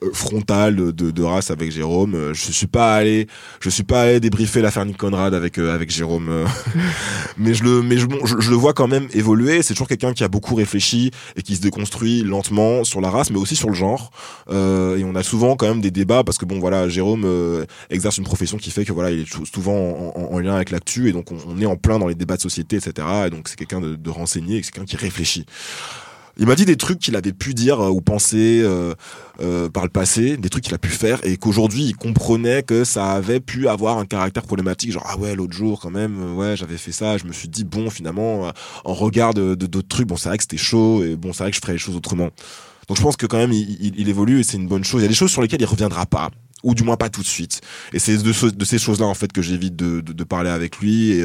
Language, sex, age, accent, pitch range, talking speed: French, male, 20-39, French, 90-115 Hz, 275 wpm